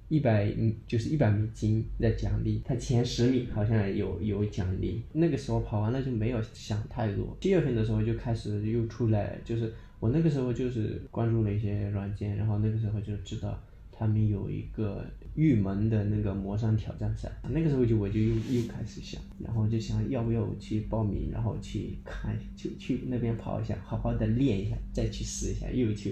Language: Chinese